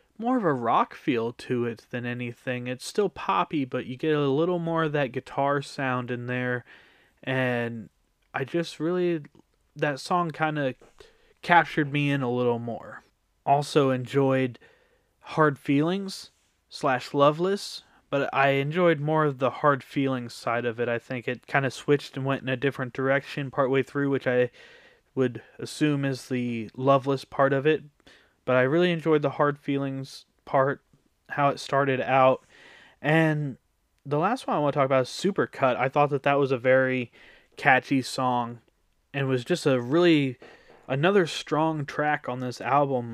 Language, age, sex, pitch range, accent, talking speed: English, 20-39, male, 125-155 Hz, American, 170 wpm